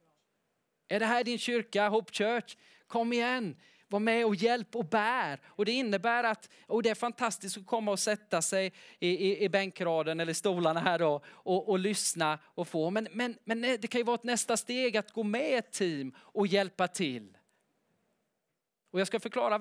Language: English